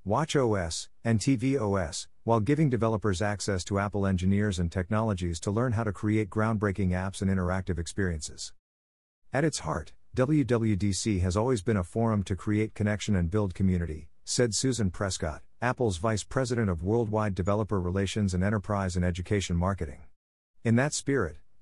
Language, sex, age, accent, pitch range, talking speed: English, male, 50-69, American, 90-115 Hz, 155 wpm